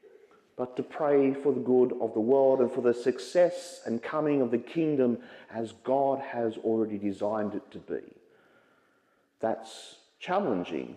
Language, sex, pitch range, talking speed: English, male, 115-155 Hz, 155 wpm